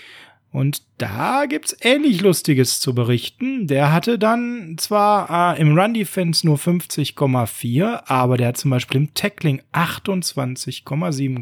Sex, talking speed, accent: male, 130 wpm, German